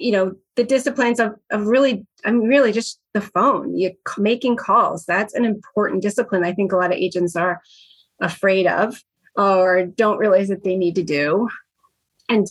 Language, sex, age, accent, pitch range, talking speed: English, female, 30-49, American, 195-240 Hz, 180 wpm